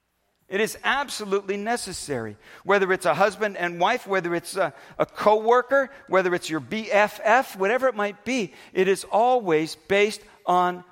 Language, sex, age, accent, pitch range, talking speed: English, male, 50-69, American, 170-225 Hz, 155 wpm